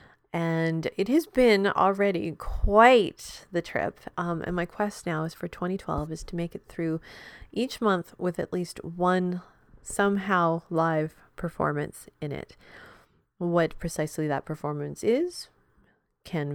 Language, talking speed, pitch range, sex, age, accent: English, 140 wpm, 160-190 Hz, female, 30-49, American